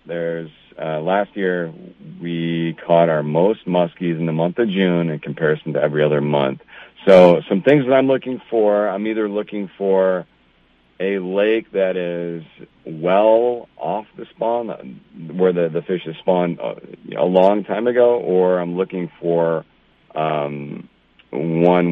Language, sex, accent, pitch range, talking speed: English, male, American, 80-105 Hz, 150 wpm